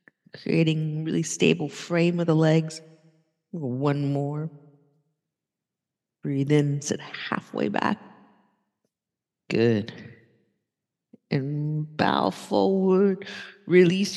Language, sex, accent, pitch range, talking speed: English, female, American, 140-180 Hz, 80 wpm